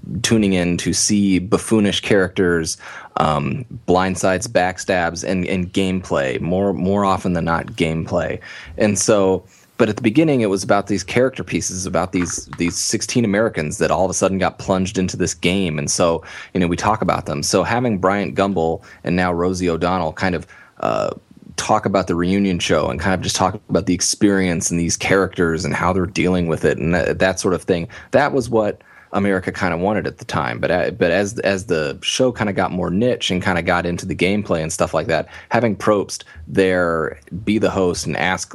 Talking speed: 205 wpm